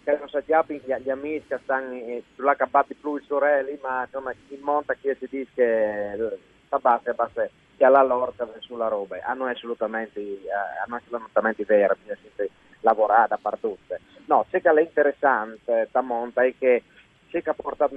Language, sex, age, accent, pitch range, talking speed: Italian, male, 30-49, native, 115-145 Hz, 180 wpm